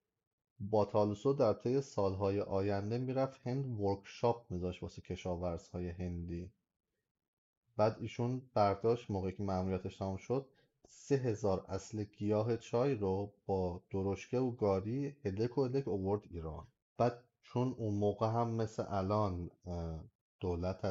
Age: 30-49